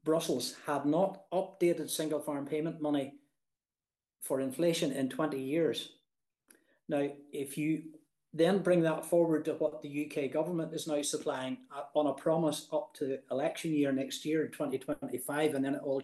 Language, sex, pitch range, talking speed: English, male, 140-165 Hz, 155 wpm